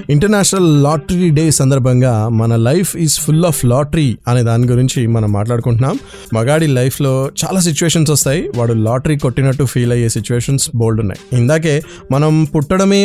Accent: native